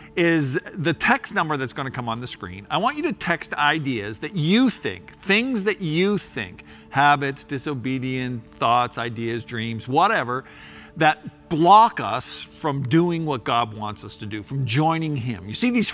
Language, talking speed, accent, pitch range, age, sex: English, 175 wpm, American, 110-165 Hz, 50-69, male